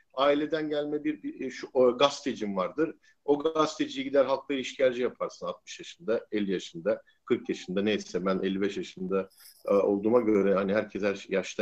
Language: Turkish